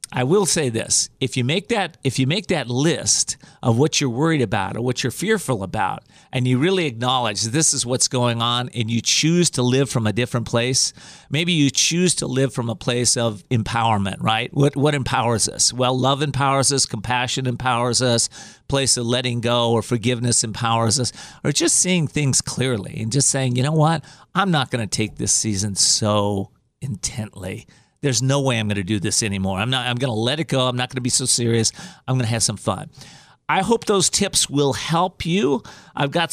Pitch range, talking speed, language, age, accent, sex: 115-150 Hz, 215 wpm, English, 40-59, American, male